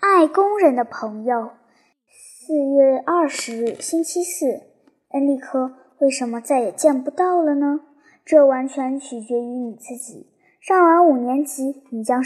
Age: 10-29